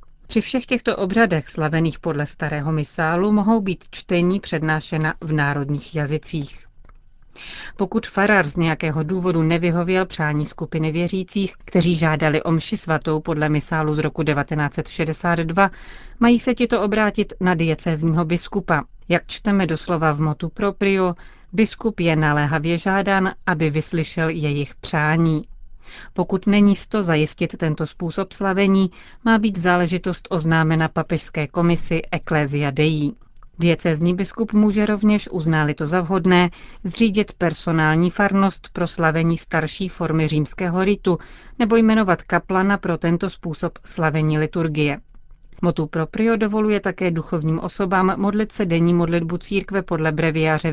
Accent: native